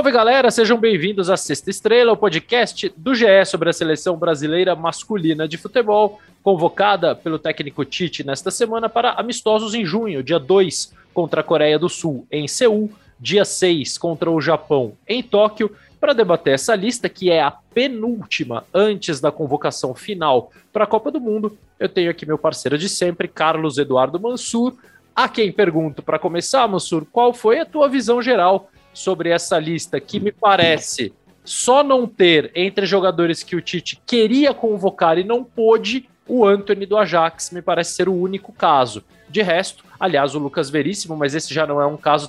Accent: Brazilian